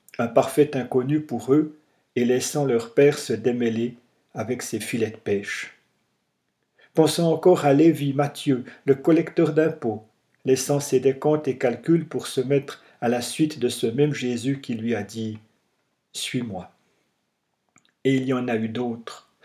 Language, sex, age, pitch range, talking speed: French, male, 50-69, 120-150 Hz, 155 wpm